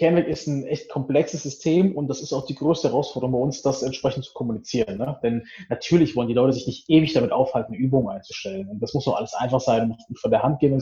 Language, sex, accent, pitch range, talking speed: German, male, German, 125-165 Hz, 250 wpm